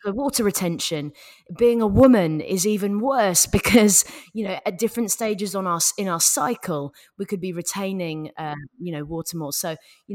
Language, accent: English, British